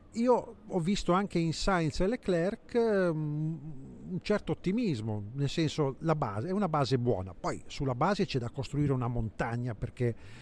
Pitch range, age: 110-145 Hz, 50-69